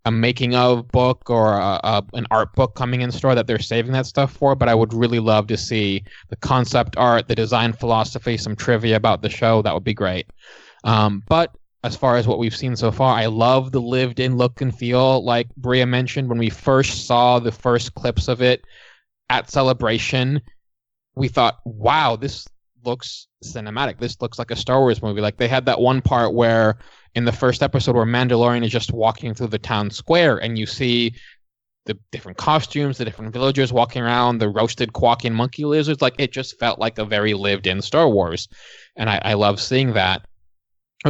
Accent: American